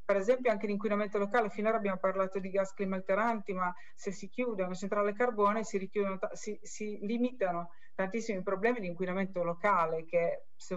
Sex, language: female, Italian